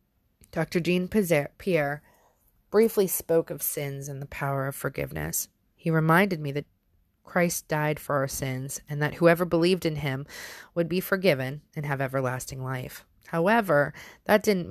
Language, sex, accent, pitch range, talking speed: English, female, American, 130-165 Hz, 150 wpm